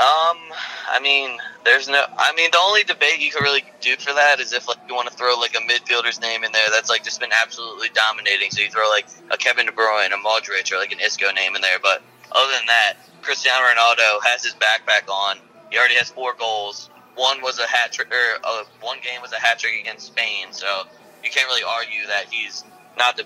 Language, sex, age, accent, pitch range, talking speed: English, male, 20-39, American, 105-125 Hz, 235 wpm